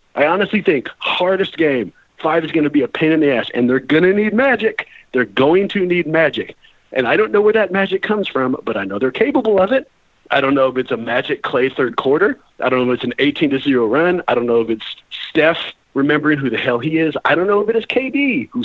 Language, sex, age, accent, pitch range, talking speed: English, male, 40-59, American, 135-205 Hz, 255 wpm